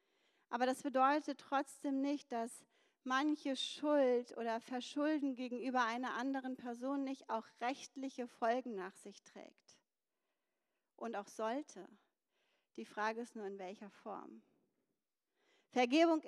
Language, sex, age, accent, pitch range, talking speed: German, female, 40-59, German, 245-295 Hz, 120 wpm